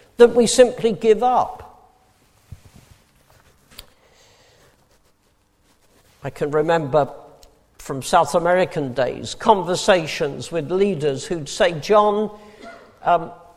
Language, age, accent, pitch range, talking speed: English, 60-79, British, 135-210 Hz, 85 wpm